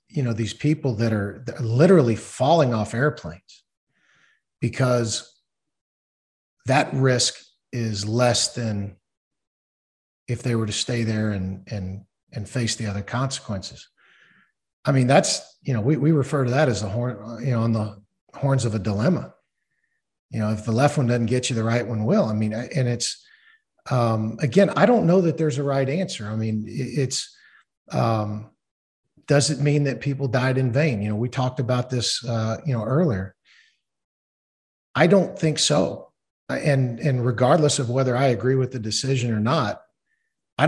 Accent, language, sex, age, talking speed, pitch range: American, English, male, 50-69, 175 wpm, 110-140 Hz